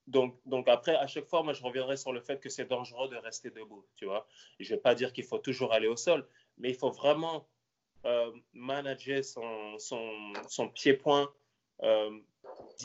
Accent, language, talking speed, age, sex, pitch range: French, French, 195 wpm, 20-39, male, 105-135 Hz